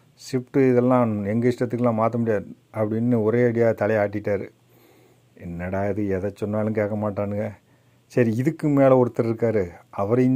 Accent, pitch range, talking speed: native, 100-120 Hz, 125 wpm